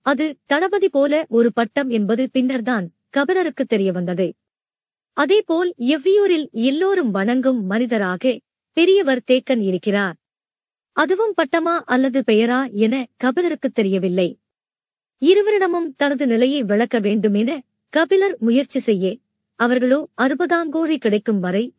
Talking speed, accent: 100 wpm, native